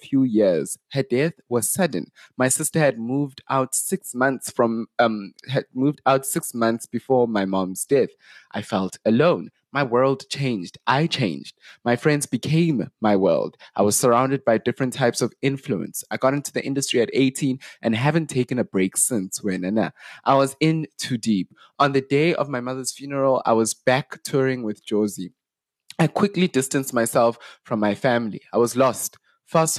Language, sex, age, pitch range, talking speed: English, male, 20-39, 115-140 Hz, 175 wpm